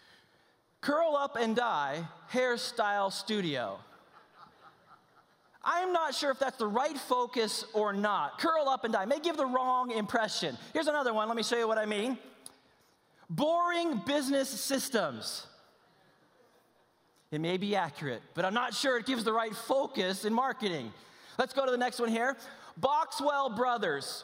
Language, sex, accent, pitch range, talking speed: English, male, American, 205-275 Hz, 155 wpm